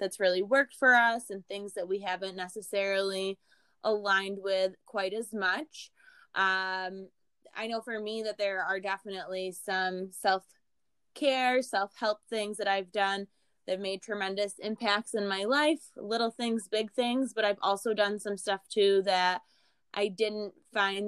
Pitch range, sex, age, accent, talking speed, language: 190-240 Hz, female, 20-39, American, 160 wpm, English